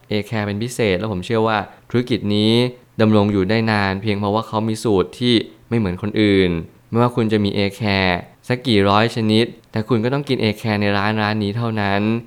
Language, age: Thai, 20-39